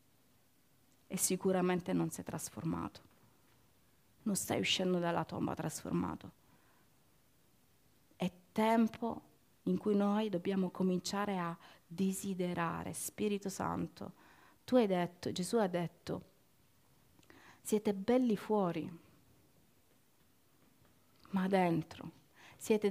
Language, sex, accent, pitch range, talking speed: Italian, female, native, 175-220 Hz, 90 wpm